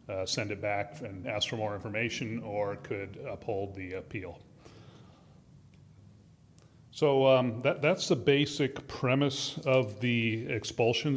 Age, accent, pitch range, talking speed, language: 40-59, American, 105-125 Hz, 130 wpm, English